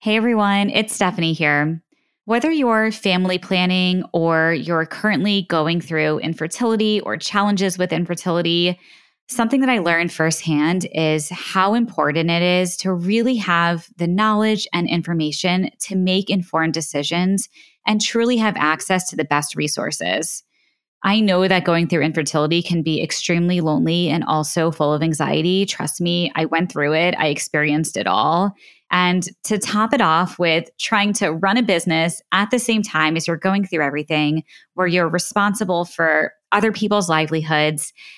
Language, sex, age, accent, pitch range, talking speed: English, female, 20-39, American, 160-205 Hz, 155 wpm